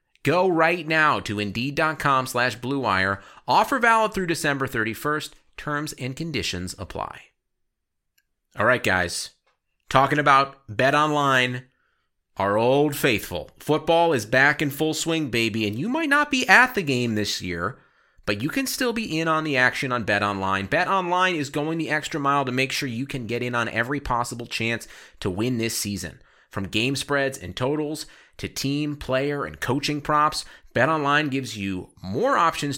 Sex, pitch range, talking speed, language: male, 105-160 Hz, 165 wpm, English